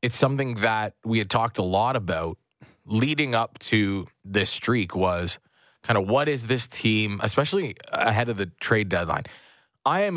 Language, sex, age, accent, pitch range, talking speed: English, male, 20-39, American, 105-135 Hz, 170 wpm